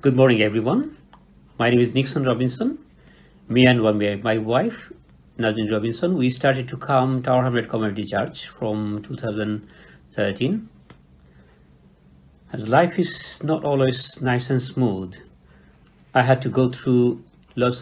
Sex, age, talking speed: male, 50-69, 130 wpm